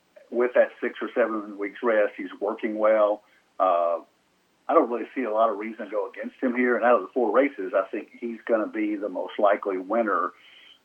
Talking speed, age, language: 220 wpm, 50-69, English